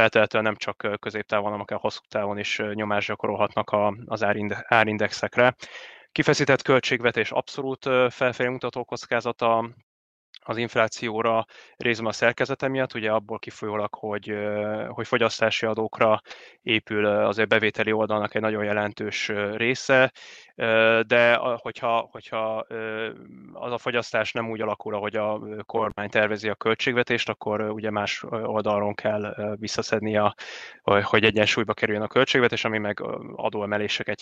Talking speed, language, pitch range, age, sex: 120 wpm, Hungarian, 105-115 Hz, 20-39, male